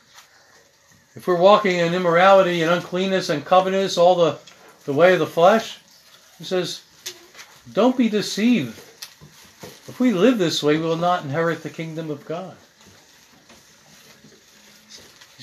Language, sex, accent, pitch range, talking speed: English, male, American, 150-200 Hz, 135 wpm